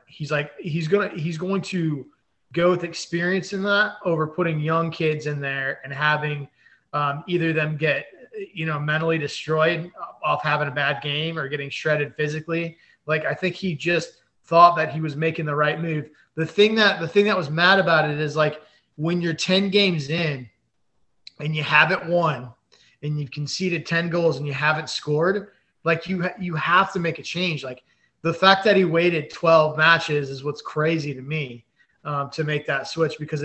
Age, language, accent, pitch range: 20-39, English, American, 145-175 Hz